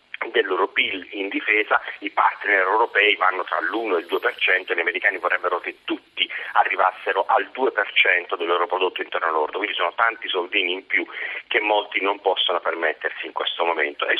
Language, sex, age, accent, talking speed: Italian, male, 40-59, native, 180 wpm